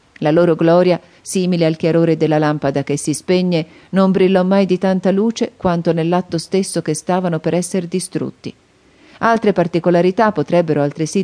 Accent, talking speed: native, 155 wpm